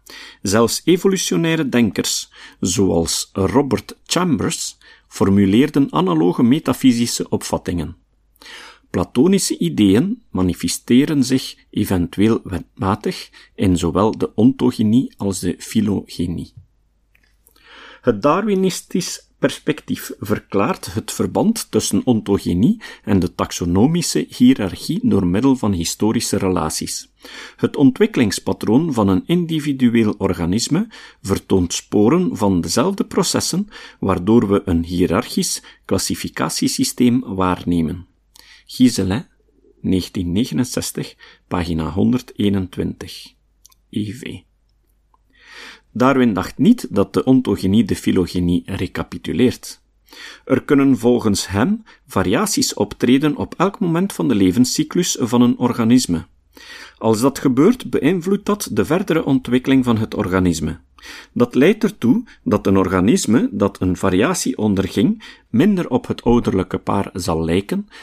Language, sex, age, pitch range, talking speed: Dutch, male, 50-69, 95-150 Hz, 100 wpm